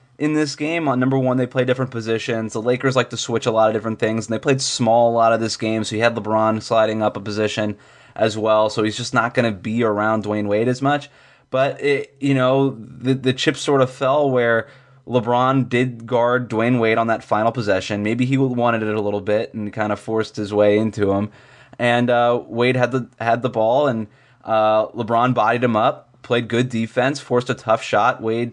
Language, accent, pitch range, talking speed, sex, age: English, American, 110-130 Hz, 225 wpm, male, 20-39